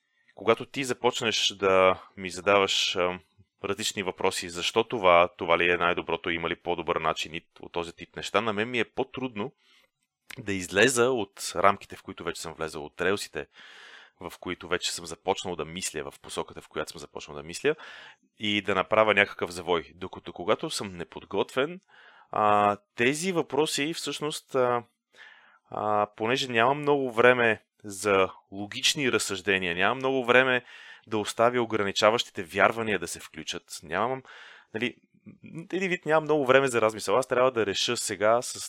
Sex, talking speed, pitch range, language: male, 155 wpm, 100-130 Hz, Bulgarian